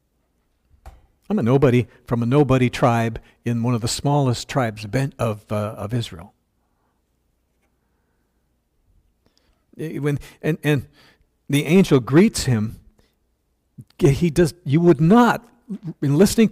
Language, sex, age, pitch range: English, male, 60-79, 105-175 Hz